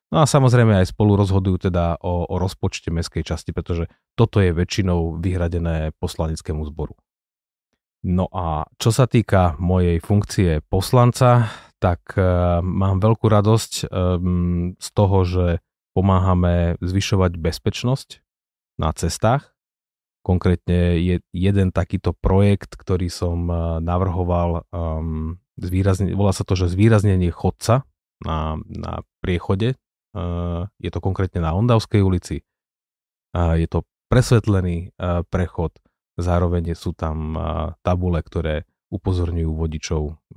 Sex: male